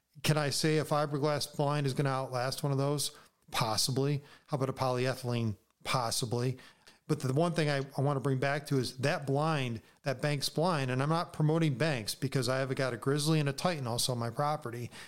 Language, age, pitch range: English, 40-59, 130-155 Hz